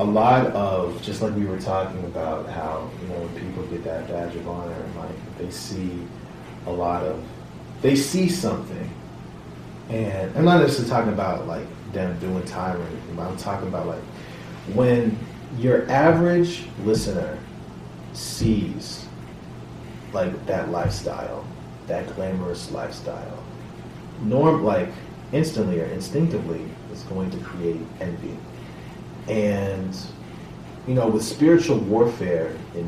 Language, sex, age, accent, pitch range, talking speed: English, male, 30-49, American, 85-105 Hz, 130 wpm